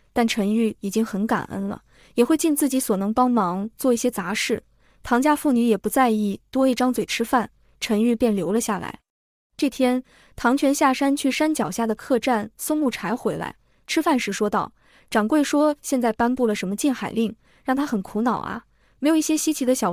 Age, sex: 20-39, female